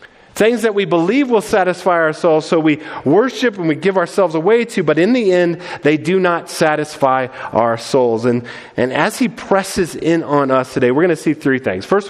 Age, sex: 40-59, male